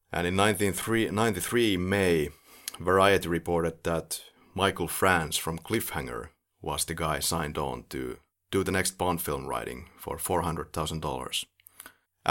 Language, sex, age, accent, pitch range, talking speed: English, male, 30-49, Finnish, 80-95 Hz, 125 wpm